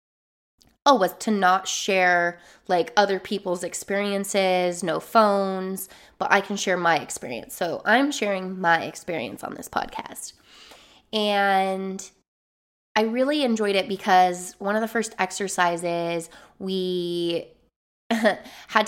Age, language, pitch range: 20-39, English, 180-220 Hz